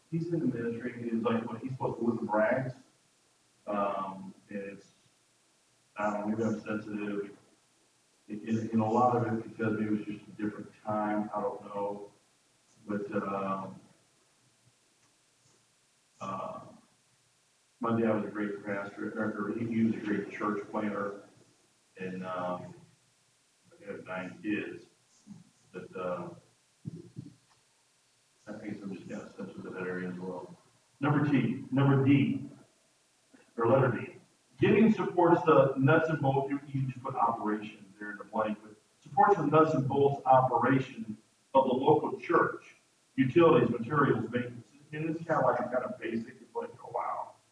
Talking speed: 155 wpm